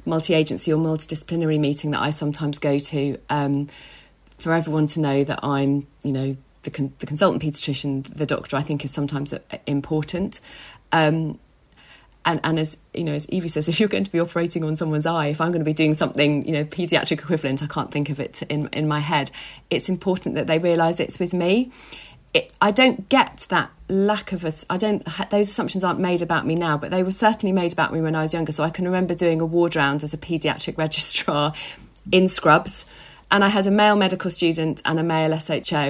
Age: 40-59